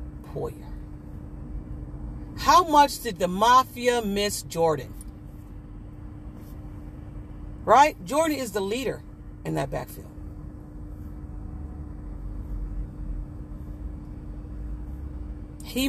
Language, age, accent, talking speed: English, 40-59, American, 60 wpm